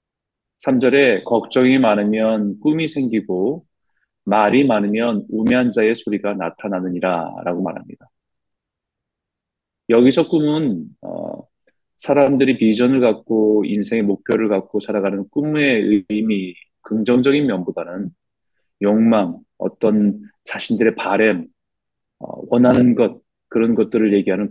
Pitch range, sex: 105-135 Hz, male